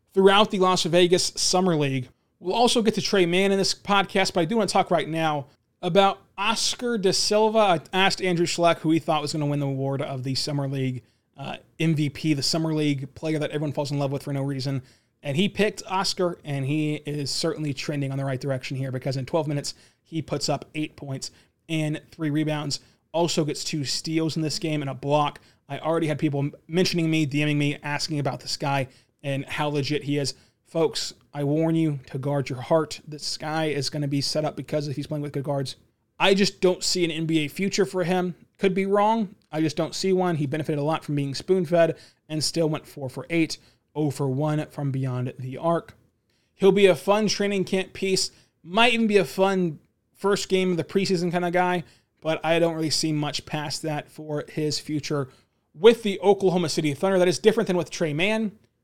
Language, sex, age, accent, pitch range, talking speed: English, male, 20-39, American, 140-180 Hz, 215 wpm